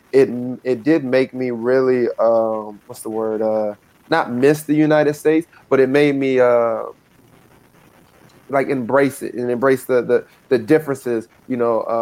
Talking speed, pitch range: 160 wpm, 115-125 Hz